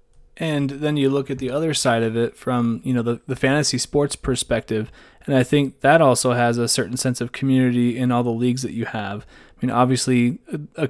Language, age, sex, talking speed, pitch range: English, 20-39, male, 220 wpm, 120-135 Hz